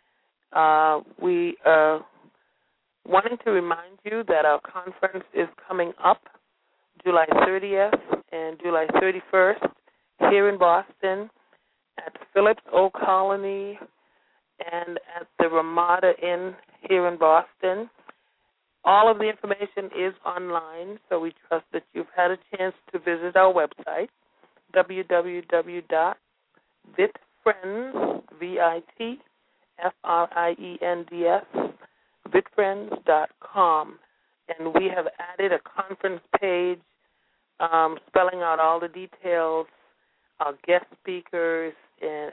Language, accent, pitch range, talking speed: English, American, 160-195 Hz, 105 wpm